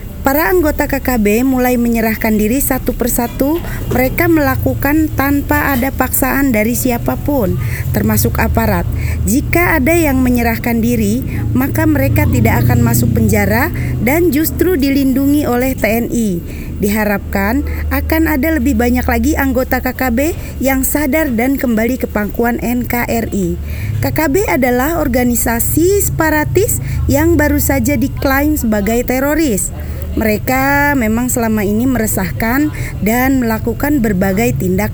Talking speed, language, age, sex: 115 wpm, Indonesian, 20-39, female